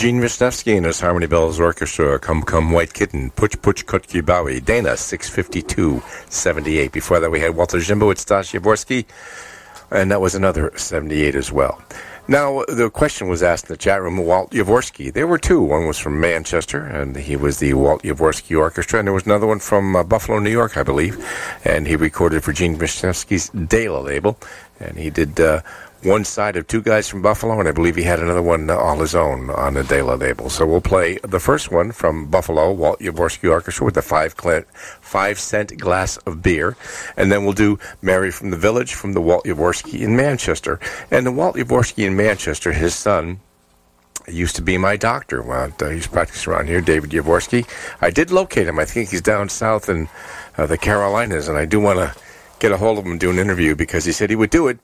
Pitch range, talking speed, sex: 80-105 Hz, 210 wpm, male